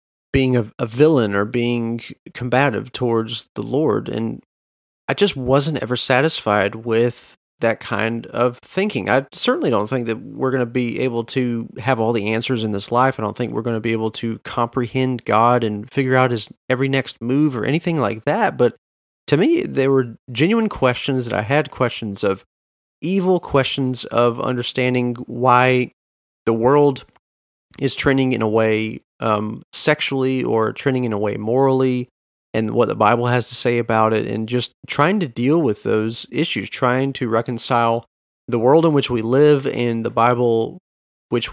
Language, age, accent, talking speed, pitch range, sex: English, 30-49, American, 175 wpm, 115-130 Hz, male